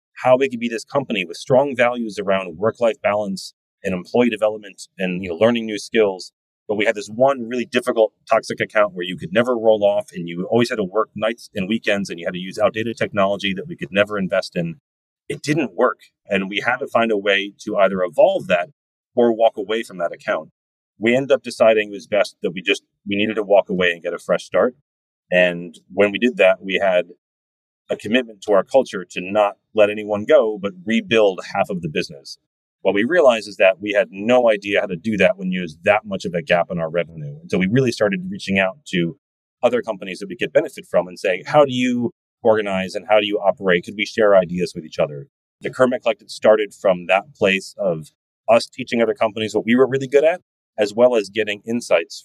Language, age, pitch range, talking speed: English, 30-49, 95-120 Hz, 225 wpm